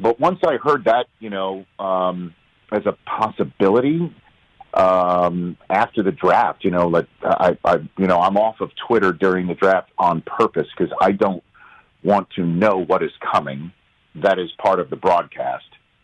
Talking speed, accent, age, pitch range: 170 wpm, American, 40-59, 90-115 Hz